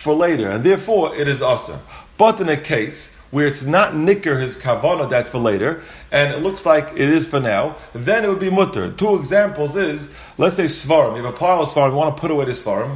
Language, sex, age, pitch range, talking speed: English, male, 40-59, 140-185 Hz, 235 wpm